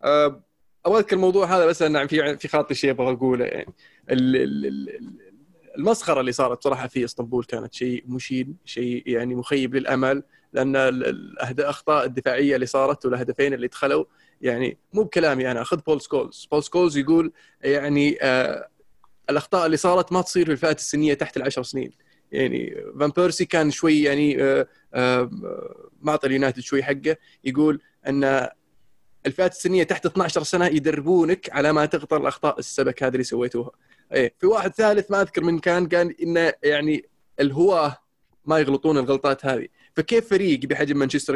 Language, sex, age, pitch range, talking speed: Arabic, male, 20-39, 135-170 Hz, 150 wpm